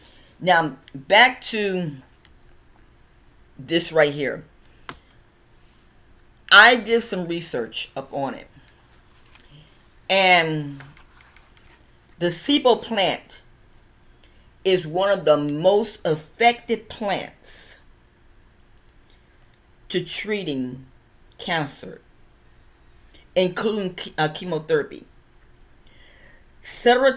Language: English